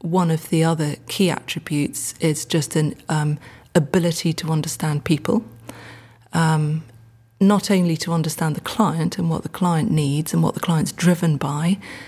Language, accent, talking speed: English, British, 160 wpm